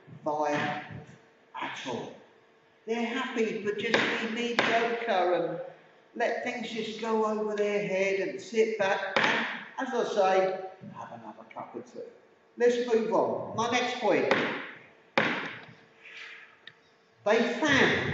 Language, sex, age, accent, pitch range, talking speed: English, male, 50-69, British, 190-235 Hz, 120 wpm